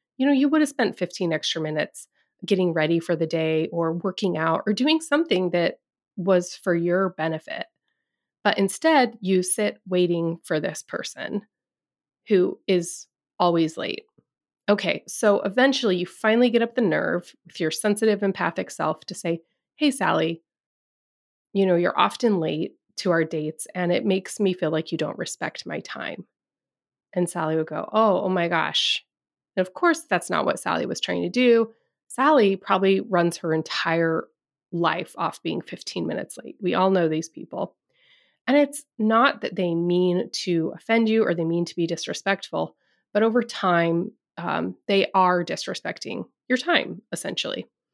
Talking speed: 170 wpm